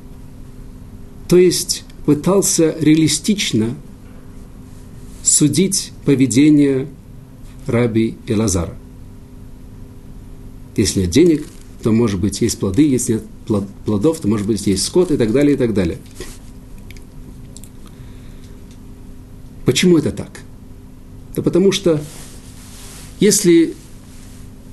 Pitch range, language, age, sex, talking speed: 105-150 Hz, Russian, 50-69, male, 90 wpm